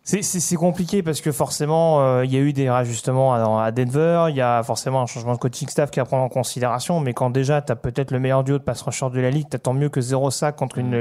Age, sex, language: 30-49, male, French